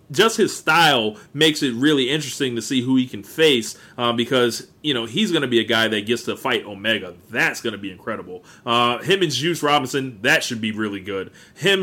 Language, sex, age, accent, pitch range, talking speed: English, male, 30-49, American, 120-160 Hz, 225 wpm